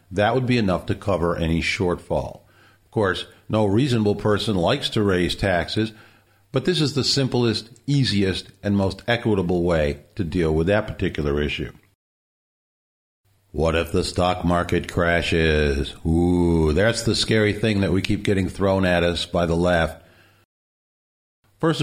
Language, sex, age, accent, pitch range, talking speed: English, male, 50-69, American, 90-120 Hz, 150 wpm